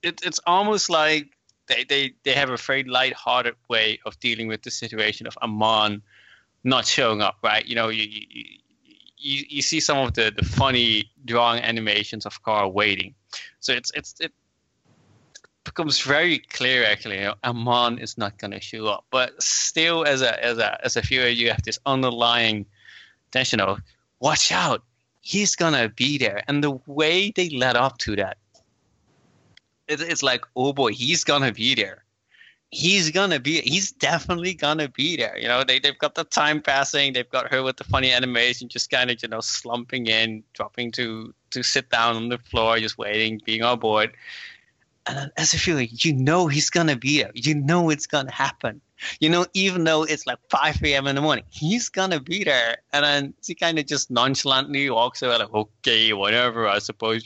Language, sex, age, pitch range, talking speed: English, male, 20-39, 115-150 Hz, 200 wpm